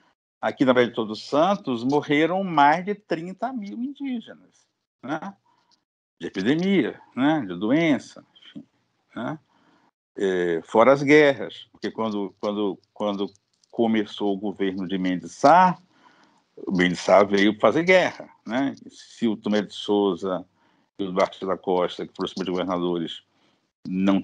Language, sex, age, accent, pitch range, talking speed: Portuguese, male, 60-79, Brazilian, 100-165 Hz, 130 wpm